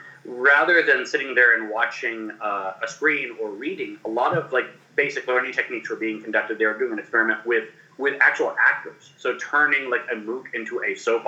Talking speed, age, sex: 200 wpm, 30-49, male